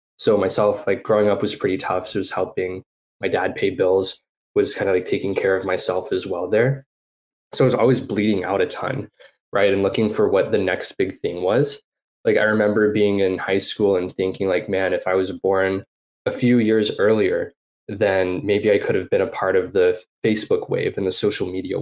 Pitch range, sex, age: 95-125 Hz, male, 20-39